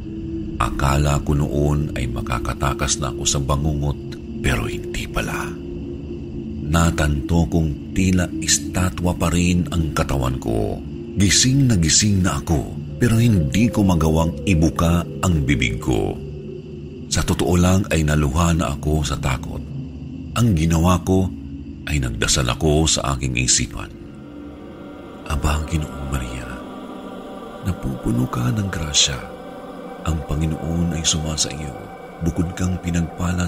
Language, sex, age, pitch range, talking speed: Filipino, male, 50-69, 70-95 Hz, 120 wpm